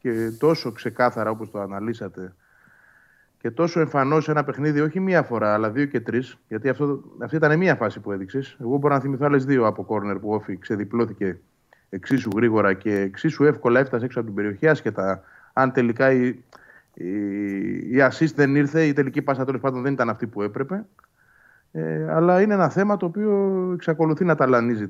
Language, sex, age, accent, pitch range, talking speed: Greek, male, 30-49, native, 105-155 Hz, 180 wpm